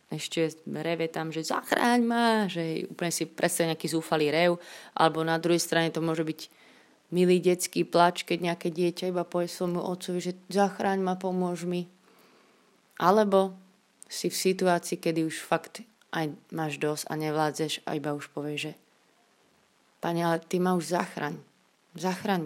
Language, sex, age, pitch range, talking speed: Slovak, female, 30-49, 160-185 Hz, 160 wpm